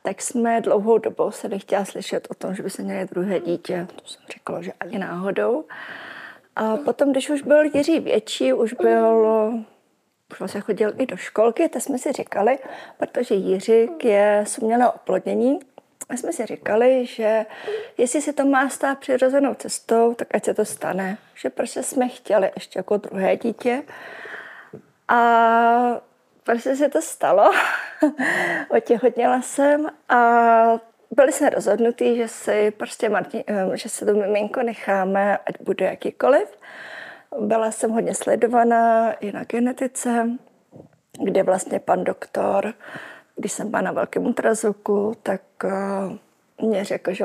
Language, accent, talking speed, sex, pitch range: Czech, native, 140 wpm, female, 205-250 Hz